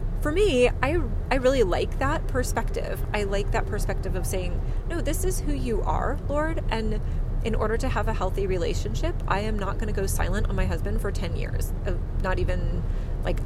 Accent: American